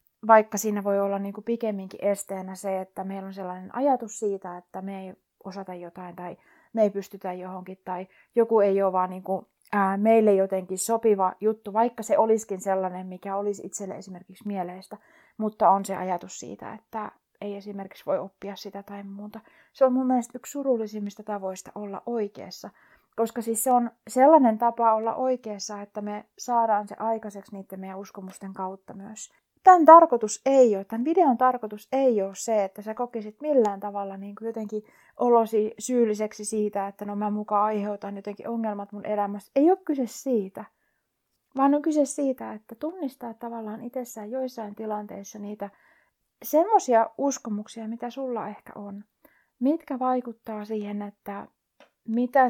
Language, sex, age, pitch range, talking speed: Finnish, female, 30-49, 200-245 Hz, 160 wpm